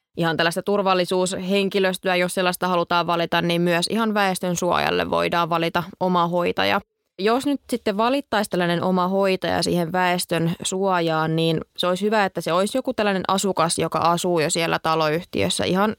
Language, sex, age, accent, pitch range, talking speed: Finnish, female, 20-39, native, 165-195 Hz, 160 wpm